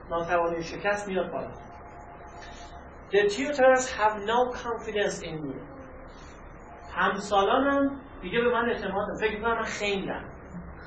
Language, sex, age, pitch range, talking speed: Persian, male, 40-59, 180-245 Hz, 110 wpm